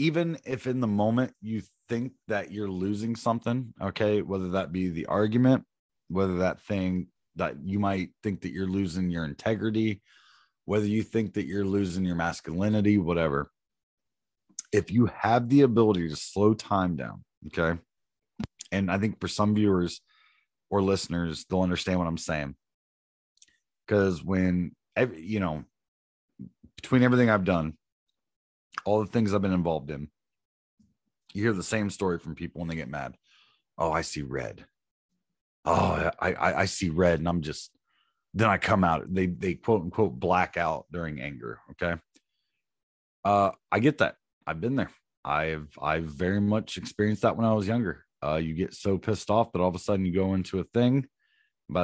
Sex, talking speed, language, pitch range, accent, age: male, 170 wpm, English, 85-105 Hz, American, 30-49